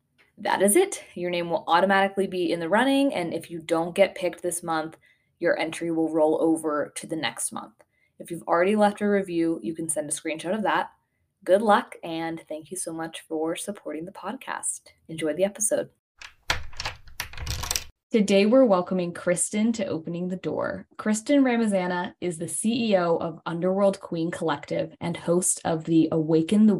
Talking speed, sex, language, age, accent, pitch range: 175 wpm, female, English, 20-39, American, 165-200 Hz